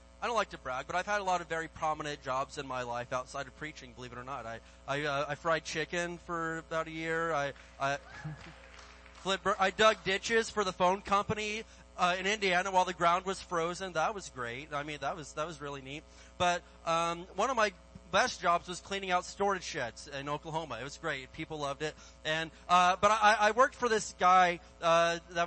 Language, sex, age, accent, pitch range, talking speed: English, male, 30-49, American, 155-210 Hz, 220 wpm